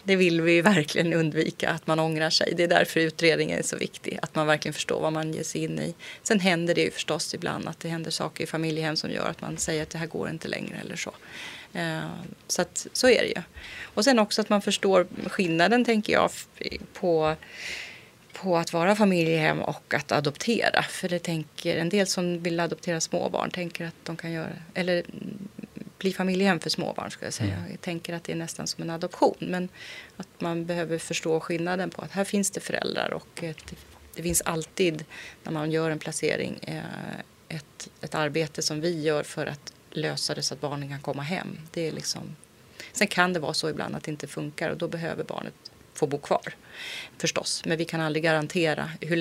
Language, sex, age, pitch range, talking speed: Swedish, female, 30-49, 160-180 Hz, 205 wpm